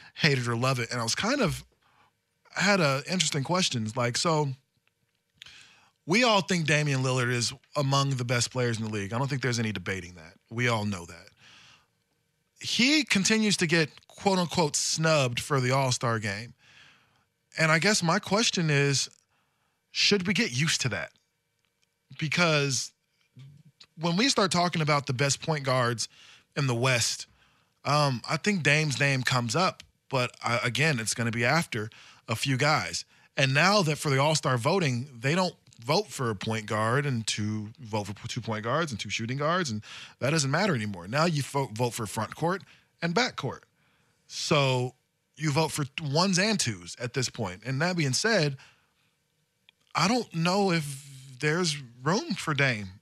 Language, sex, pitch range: English, male, 120-165 Hz